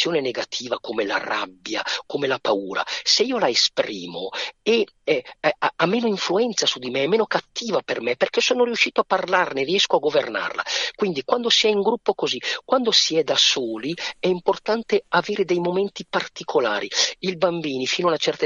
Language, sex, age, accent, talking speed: Italian, male, 50-69, native, 180 wpm